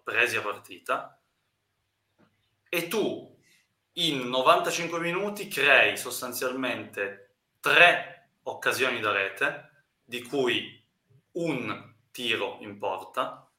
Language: Italian